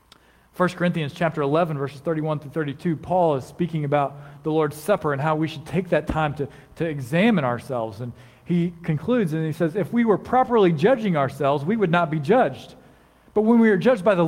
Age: 40-59